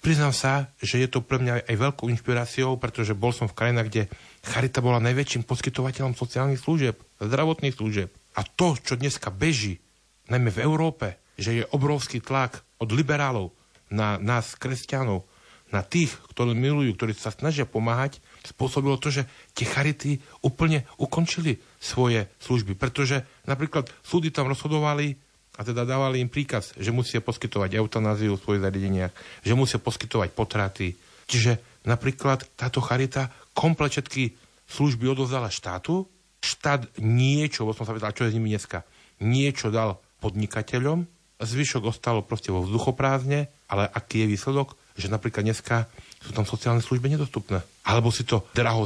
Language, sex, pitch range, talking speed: Slovak, male, 110-135 Hz, 150 wpm